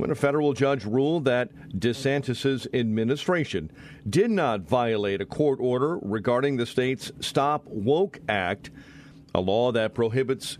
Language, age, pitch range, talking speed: English, 50-69, 120-145 Hz, 135 wpm